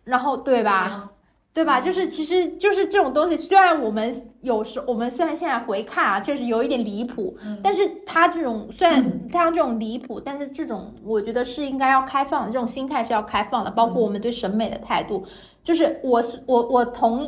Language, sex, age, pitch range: Chinese, female, 20-39, 225-295 Hz